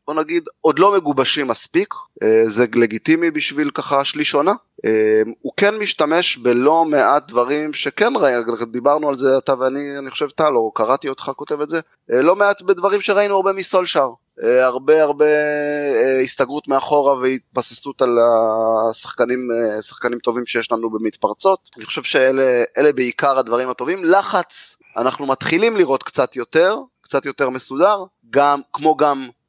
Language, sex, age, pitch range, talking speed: Hebrew, male, 30-49, 125-160 Hz, 140 wpm